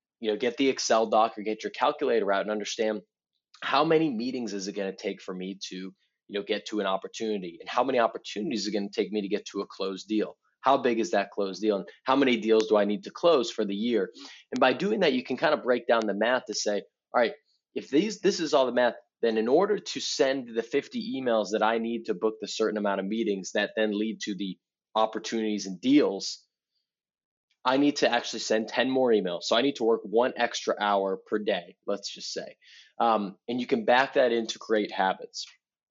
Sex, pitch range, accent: male, 105-120 Hz, American